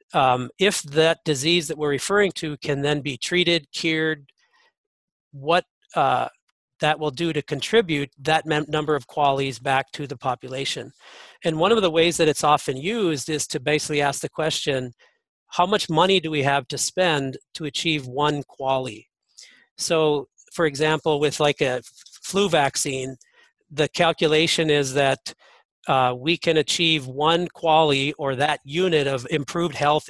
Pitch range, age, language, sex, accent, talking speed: 140-165 Hz, 40-59, English, male, American, 160 wpm